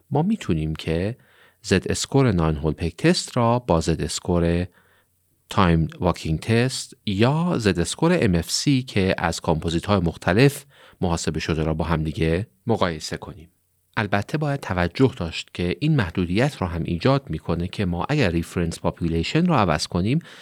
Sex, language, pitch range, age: male, Persian, 85-115 Hz, 40-59